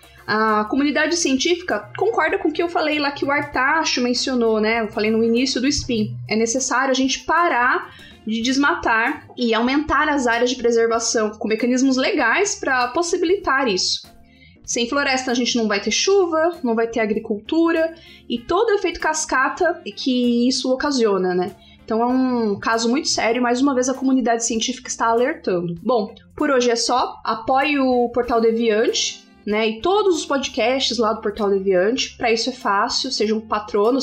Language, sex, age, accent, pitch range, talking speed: Portuguese, female, 20-39, Brazilian, 215-270 Hz, 175 wpm